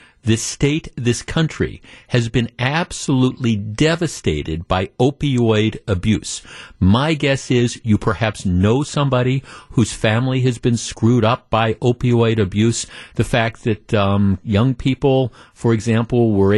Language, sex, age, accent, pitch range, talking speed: English, male, 50-69, American, 105-135 Hz, 130 wpm